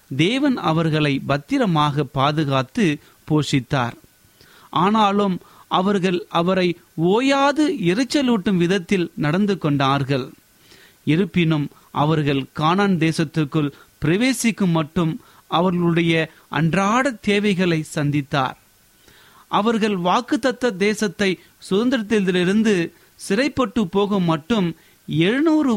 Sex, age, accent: male, 30-49, native